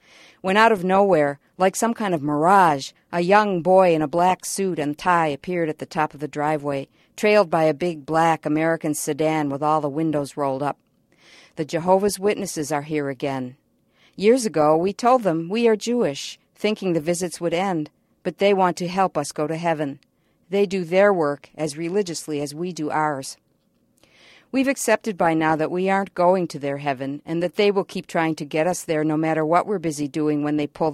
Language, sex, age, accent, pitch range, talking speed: English, female, 50-69, American, 150-185 Hz, 205 wpm